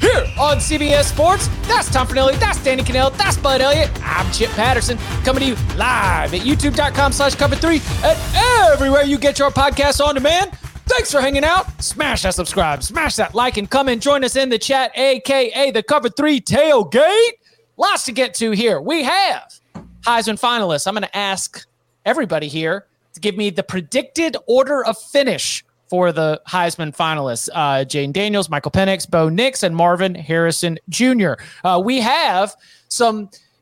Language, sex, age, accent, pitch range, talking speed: English, male, 30-49, American, 185-275 Hz, 175 wpm